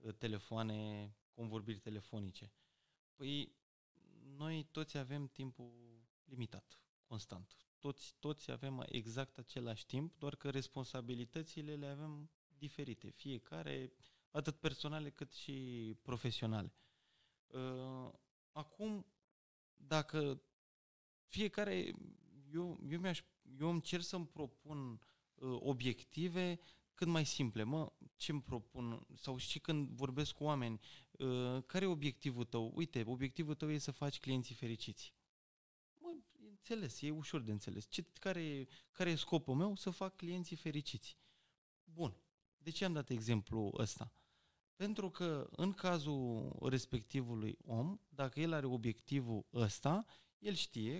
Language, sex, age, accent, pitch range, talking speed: Romanian, male, 20-39, native, 120-160 Hz, 120 wpm